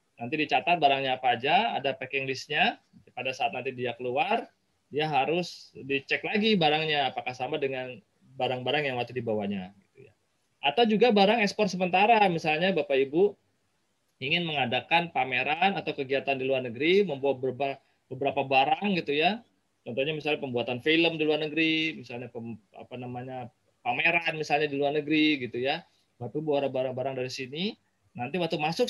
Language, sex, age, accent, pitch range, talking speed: Indonesian, male, 20-39, native, 130-170 Hz, 150 wpm